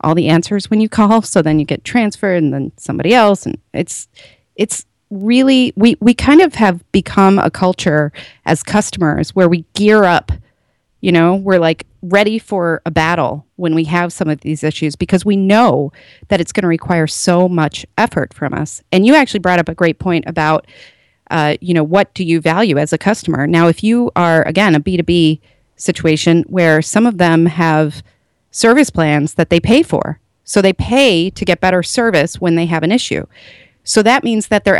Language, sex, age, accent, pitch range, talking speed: English, female, 30-49, American, 160-210 Hz, 200 wpm